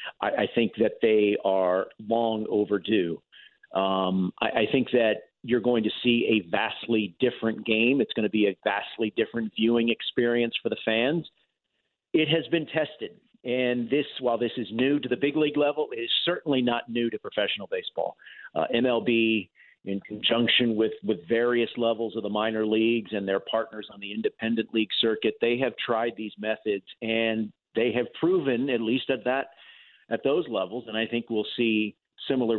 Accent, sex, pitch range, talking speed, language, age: American, male, 110-135 Hz, 180 wpm, English, 50-69